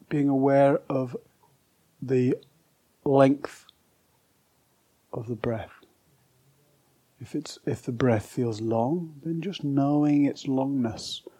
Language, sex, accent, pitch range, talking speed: English, male, British, 125-145 Hz, 105 wpm